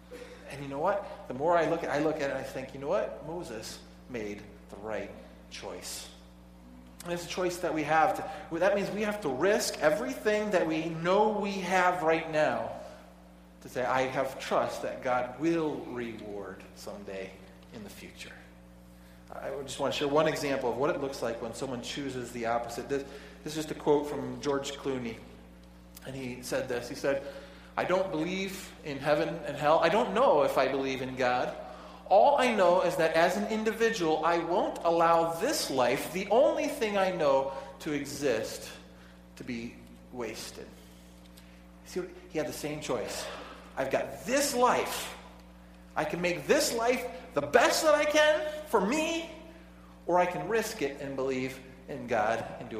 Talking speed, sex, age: 185 wpm, male, 40-59